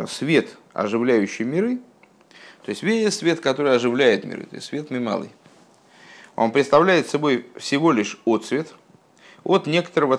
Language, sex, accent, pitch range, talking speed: Russian, male, native, 120-170 Hz, 130 wpm